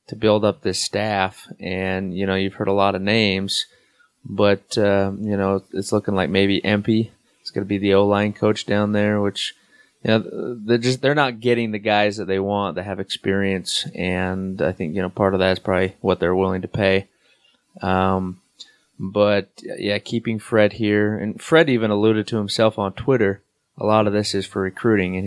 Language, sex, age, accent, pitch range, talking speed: English, male, 20-39, American, 95-110 Hz, 200 wpm